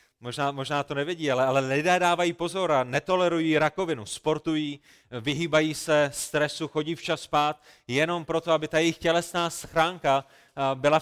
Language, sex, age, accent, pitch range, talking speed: Czech, male, 30-49, native, 140-165 Hz, 145 wpm